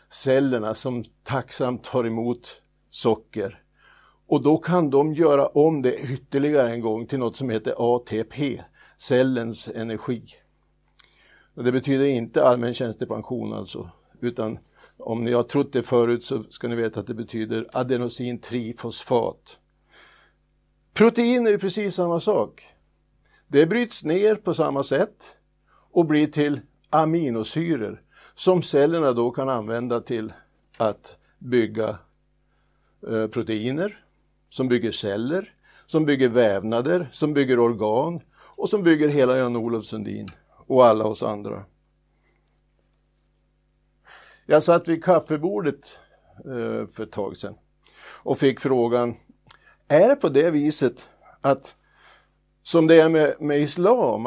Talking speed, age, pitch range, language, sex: 125 wpm, 60-79, 115-150 Hz, Swedish, male